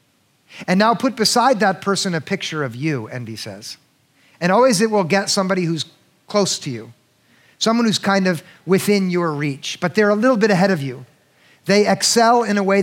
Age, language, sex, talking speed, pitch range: 50-69, English, male, 195 wpm, 150-205 Hz